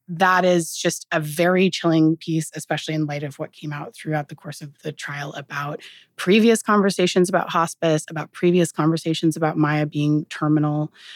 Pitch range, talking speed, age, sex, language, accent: 150-185 Hz, 170 wpm, 30-49, female, English, American